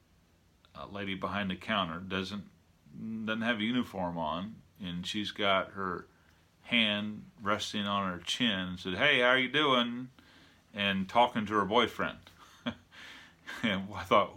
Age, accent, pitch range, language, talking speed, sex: 40-59, American, 90-105 Hz, English, 145 wpm, male